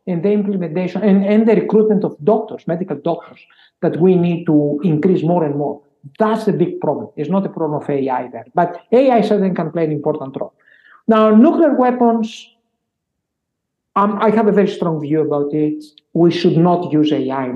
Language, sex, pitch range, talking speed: English, male, 145-200 Hz, 190 wpm